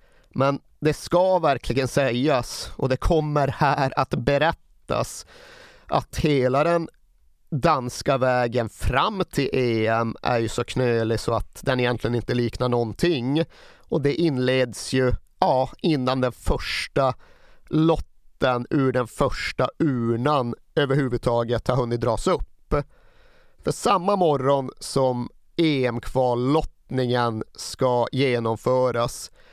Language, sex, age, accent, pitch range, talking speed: Swedish, male, 30-49, native, 120-160 Hz, 110 wpm